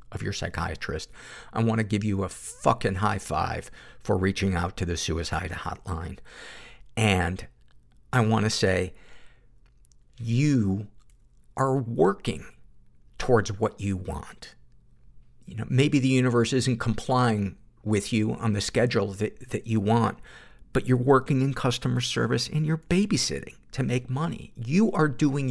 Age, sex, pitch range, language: 50-69, male, 100-130 Hz, English